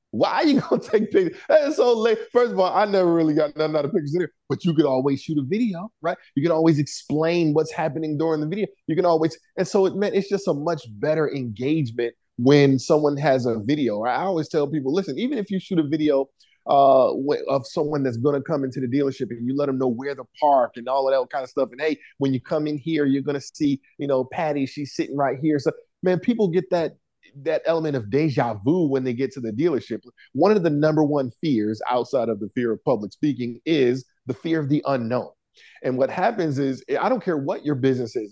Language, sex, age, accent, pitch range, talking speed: English, male, 30-49, American, 135-170 Hz, 245 wpm